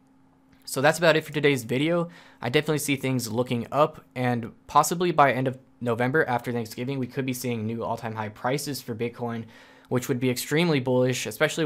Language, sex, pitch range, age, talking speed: English, male, 120-140 Hz, 10-29, 195 wpm